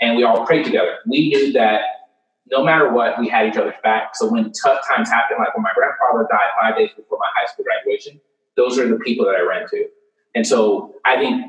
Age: 30-49